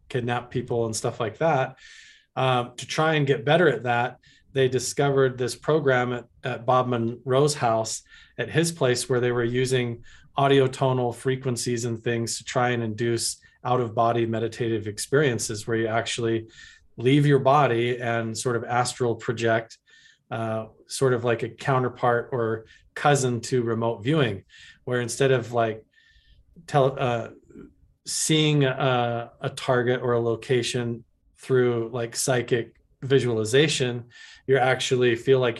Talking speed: 140 wpm